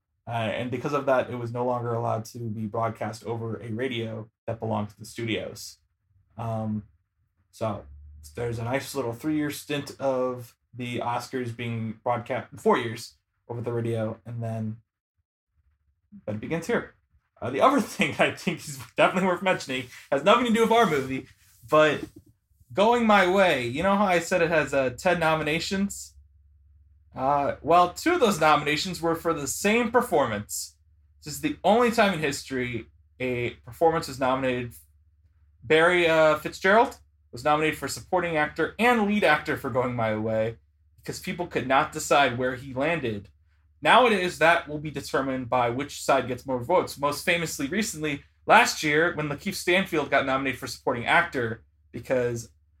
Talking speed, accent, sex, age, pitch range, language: 165 wpm, American, male, 20-39, 110-155 Hz, English